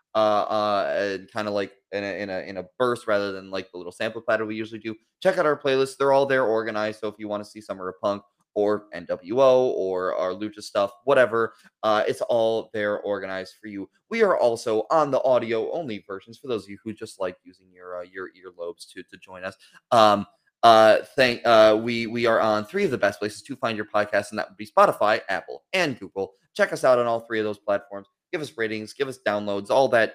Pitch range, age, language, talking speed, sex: 100-130 Hz, 20-39, English, 235 wpm, male